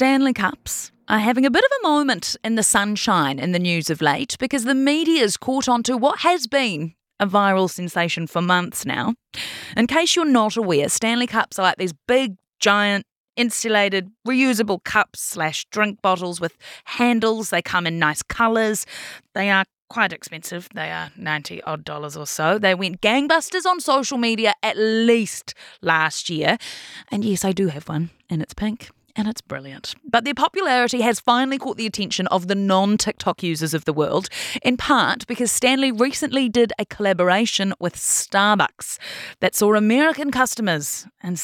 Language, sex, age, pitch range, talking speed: English, female, 30-49, 180-245 Hz, 170 wpm